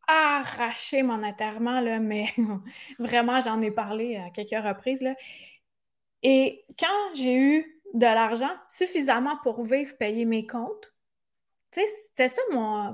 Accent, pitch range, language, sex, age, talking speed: Canadian, 230-280 Hz, French, female, 20-39, 120 wpm